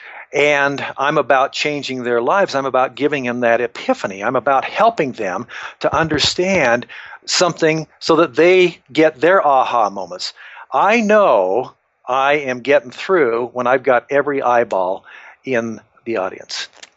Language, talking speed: English, 140 wpm